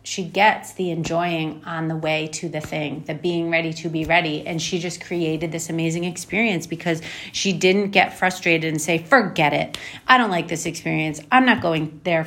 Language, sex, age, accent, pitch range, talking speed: English, female, 30-49, American, 160-185 Hz, 200 wpm